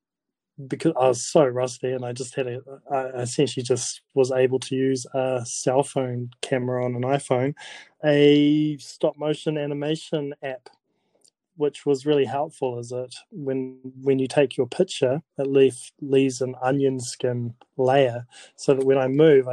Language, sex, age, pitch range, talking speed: English, male, 20-39, 130-150 Hz, 160 wpm